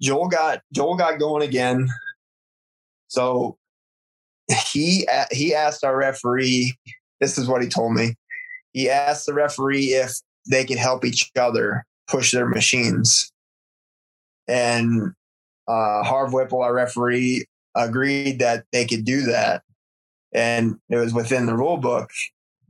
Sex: male